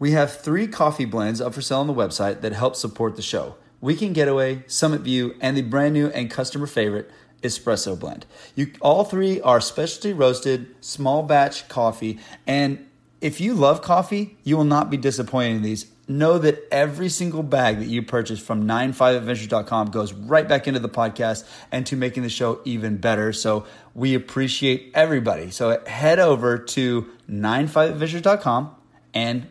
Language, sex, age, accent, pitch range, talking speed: English, male, 30-49, American, 115-145 Hz, 165 wpm